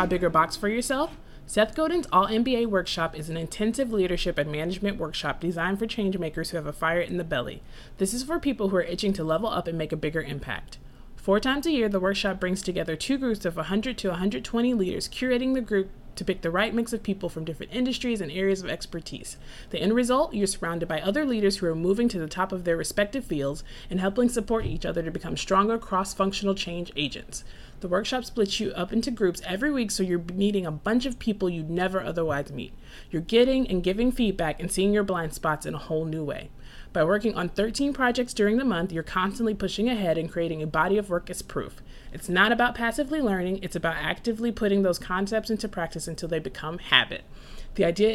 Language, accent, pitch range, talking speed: English, American, 170-225 Hz, 225 wpm